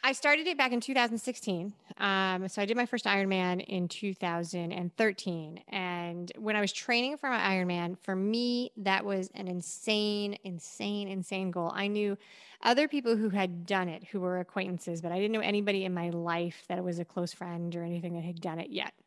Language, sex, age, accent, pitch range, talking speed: English, female, 30-49, American, 180-215 Hz, 200 wpm